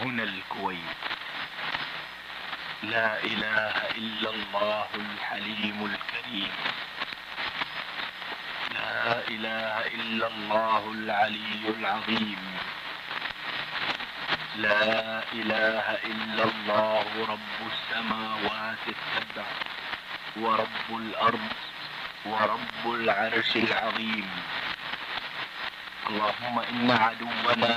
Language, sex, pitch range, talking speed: Italian, male, 110-120 Hz, 65 wpm